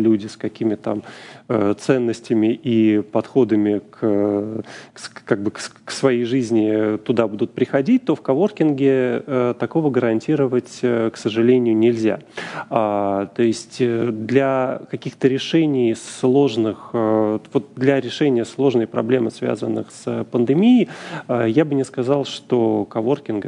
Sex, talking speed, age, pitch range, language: male, 105 wpm, 30-49, 110-135 Hz, Russian